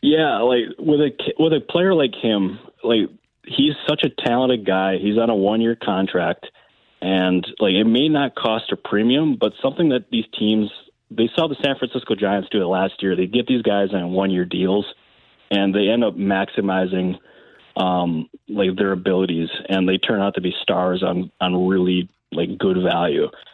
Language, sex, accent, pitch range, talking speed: English, male, American, 95-115 Hz, 185 wpm